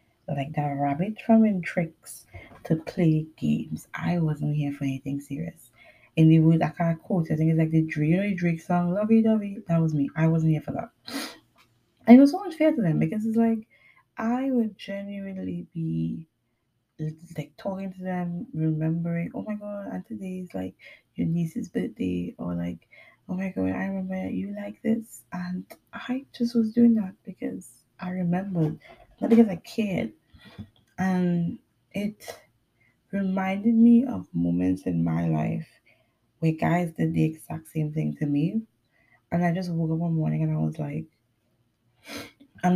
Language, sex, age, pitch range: English, female, 20-39, 125-200 Hz